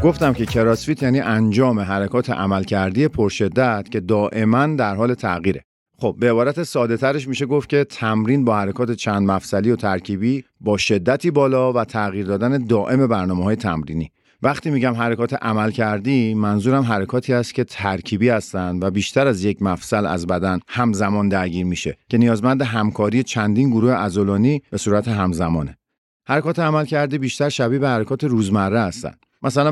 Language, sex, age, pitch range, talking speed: Persian, male, 50-69, 100-125 Hz, 155 wpm